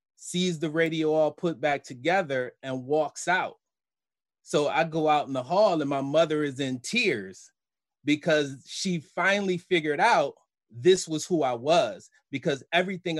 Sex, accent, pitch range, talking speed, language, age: male, American, 130-155 Hz, 160 wpm, English, 30-49